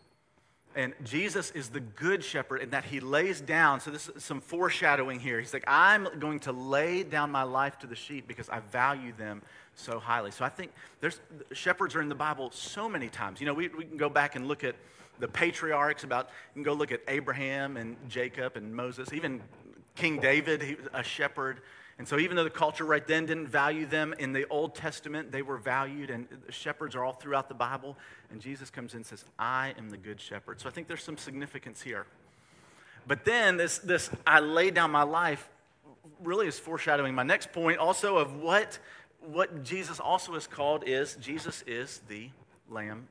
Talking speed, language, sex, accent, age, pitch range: 205 wpm, English, male, American, 40-59, 130-155 Hz